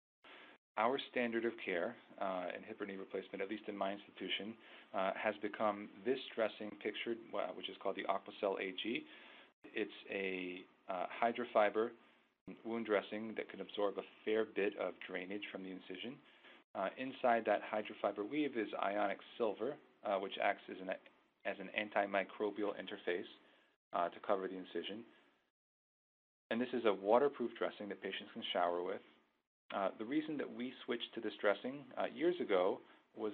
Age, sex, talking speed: 40-59, male, 160 wpm